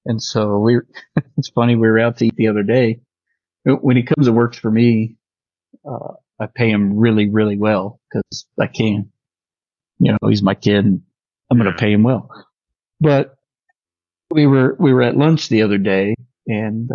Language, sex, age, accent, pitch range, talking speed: English, male, 40-59, American, 100-125 Hz, 175 wpm